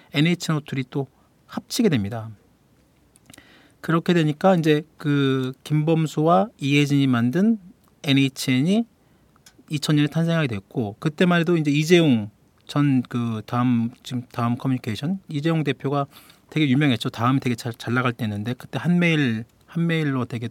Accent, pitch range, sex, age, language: native, 125-165 Hz, male, 40-59, Korean